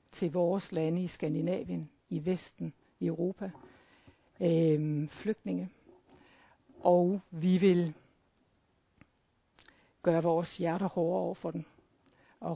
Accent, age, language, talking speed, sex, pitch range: native, 60-79, Danish, 105 wpm, female, 170-195 Hz